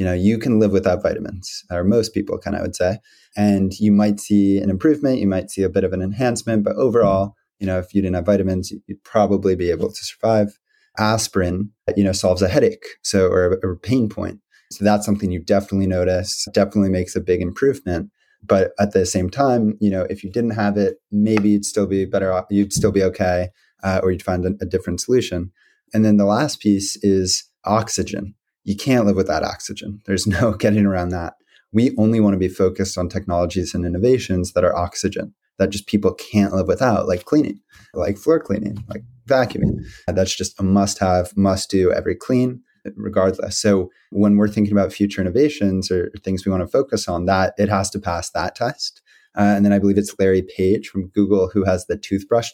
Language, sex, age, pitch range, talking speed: English, male, 20-39, 95-105 Hz, 210 wpm